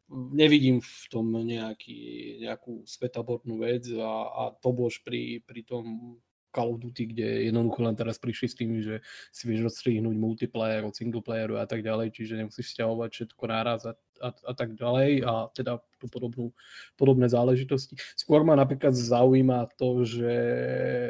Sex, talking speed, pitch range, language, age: male, 155 wpm, 115-130 Hz, Slovak, 20-39